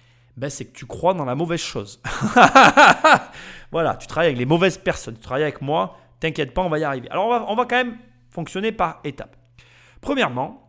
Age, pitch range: 30-49, 120-180 Hz